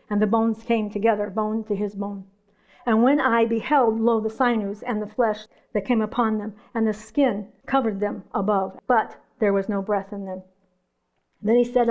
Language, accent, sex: English, American, female